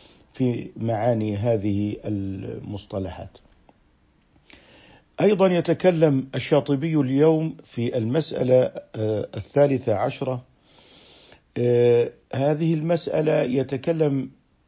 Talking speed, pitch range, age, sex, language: 60 wpm, 125-160 Hz, 50-69, male, Arabic